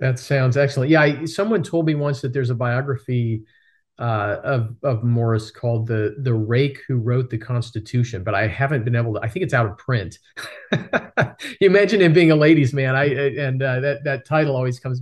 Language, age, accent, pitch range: English, 40-59, American, 110-140 Hz